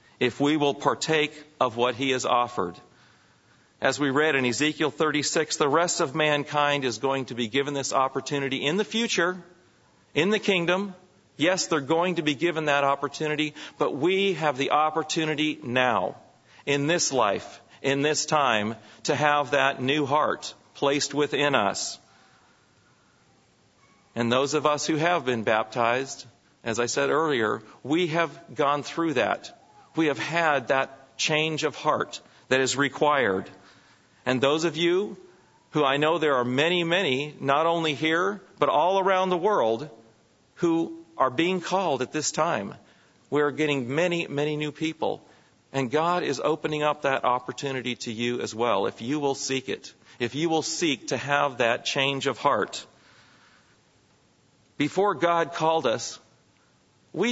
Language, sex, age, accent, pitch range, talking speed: English, male, 40-59, American, 135-165 Hz, 160 wpm